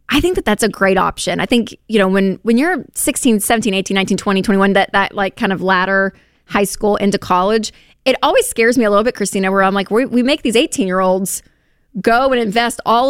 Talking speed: 240 wpm